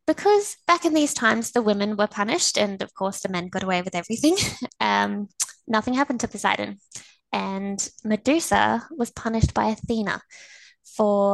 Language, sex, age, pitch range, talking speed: English, female, 20-39, 190-230 Hz, 160 wpm